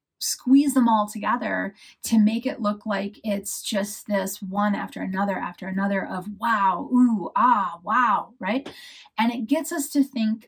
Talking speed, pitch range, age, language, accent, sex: 165 wpm, 205-245 Hz, 30-49, English, American, female